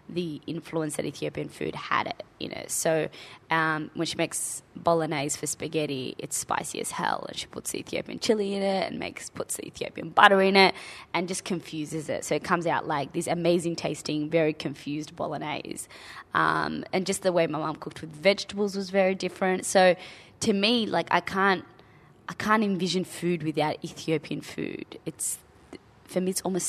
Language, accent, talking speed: English, Australian, 185 wpm